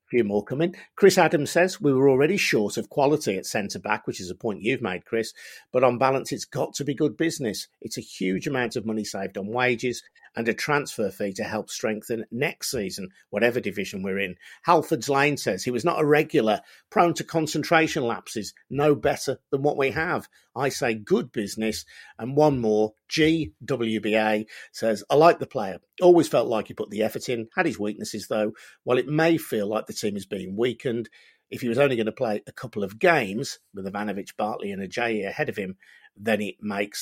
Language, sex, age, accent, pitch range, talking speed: English, male, 50-69, British, 110-155 Hz, 210 wpm